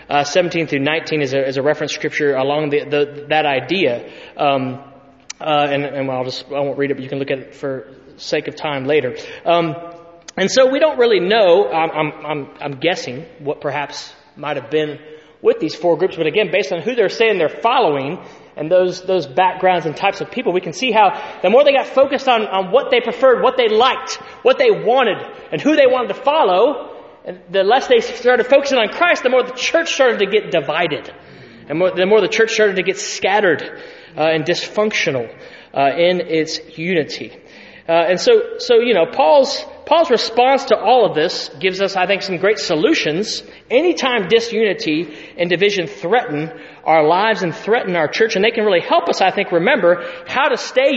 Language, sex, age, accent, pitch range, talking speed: English, male, 30-49, American, 155-260 Hz, 205 wpm